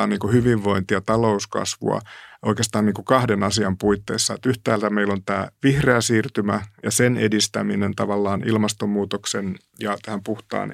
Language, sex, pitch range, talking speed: Finnish, male, 100-115 Hz, 130 wpm